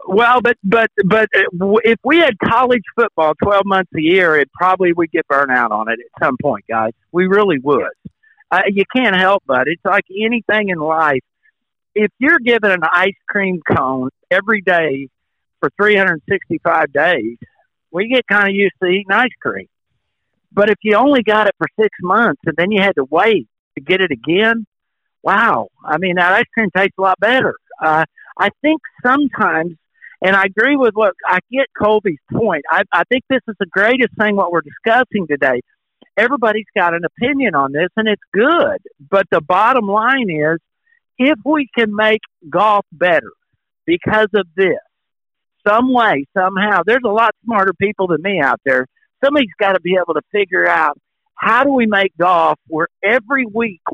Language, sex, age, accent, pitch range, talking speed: English, male, 60-79, American, 170-230 Hz, 185 wpm